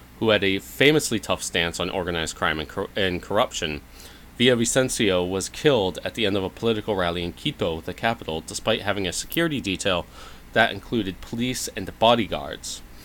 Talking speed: 170 wpm